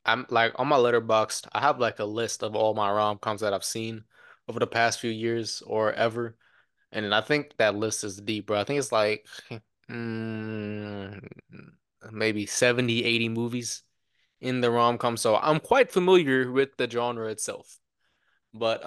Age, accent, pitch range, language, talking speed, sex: 20-39, American, 105-120 Hz, English, 175 wpm, male